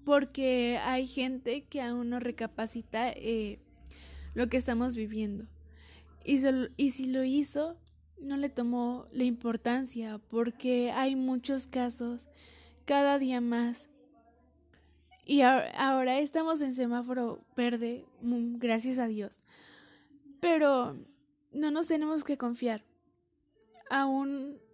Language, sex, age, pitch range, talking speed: Spanish, female, 20-39, 230-275 Hz, 110 wpm